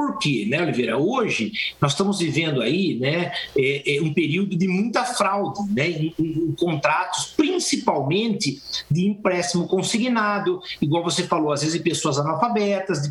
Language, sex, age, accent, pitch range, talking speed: Portuguese, male, 50-69, Brazilian, 165-220 Hz, 155 wpm